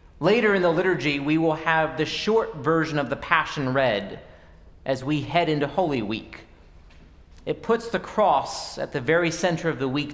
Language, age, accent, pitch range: English, 30-49, American, 120-190 Hz